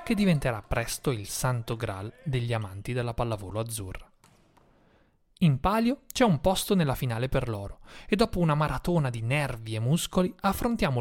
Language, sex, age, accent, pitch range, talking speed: Italian, male, 30-49, native, 115-165 Hz, 160 wpm